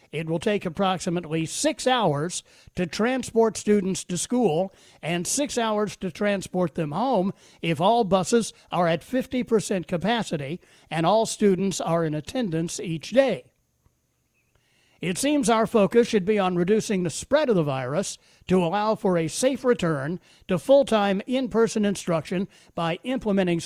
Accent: American